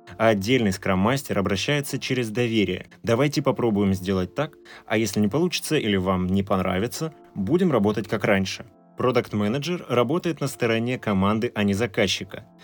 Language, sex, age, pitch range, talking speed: Russian, male, 20-39, 95-115 Hz, 145 wpm